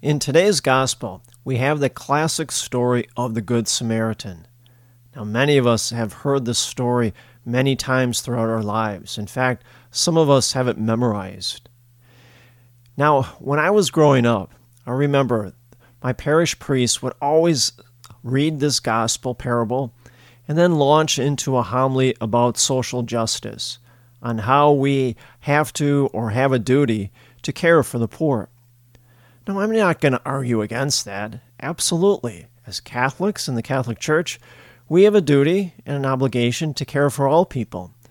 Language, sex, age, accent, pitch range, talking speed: English, male, 40-59, American, 120-140 Hz, 155 wpm